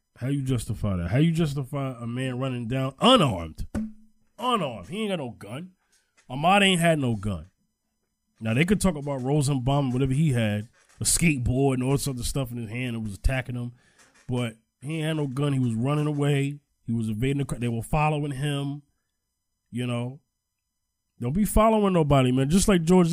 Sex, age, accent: male, 20-39, American